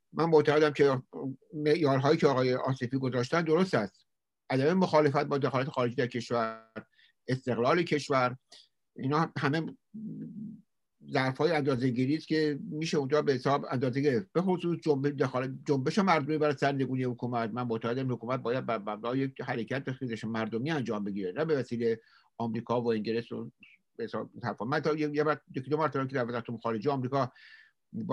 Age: 60-79